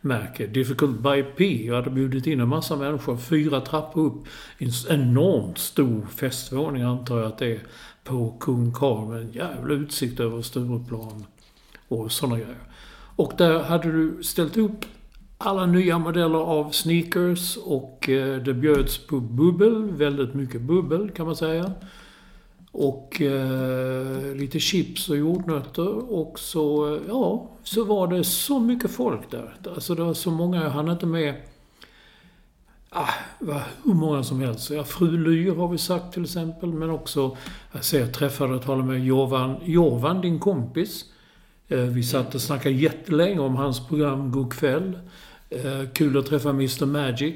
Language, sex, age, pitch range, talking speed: Swedish, male, 60-79, 130-170 Hz, 155 wpm